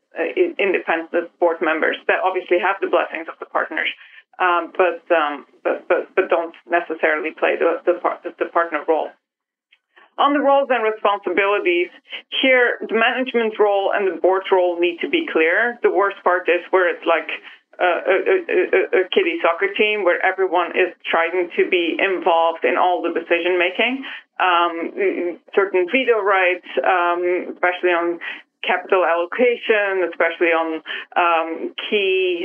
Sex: female